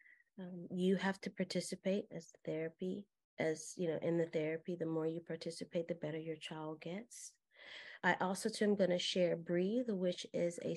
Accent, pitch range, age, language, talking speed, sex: American, 160-185 Hz, 30-49, English, 180 wpm, female